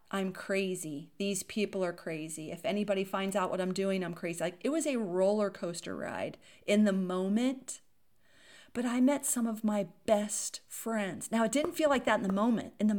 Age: 40-59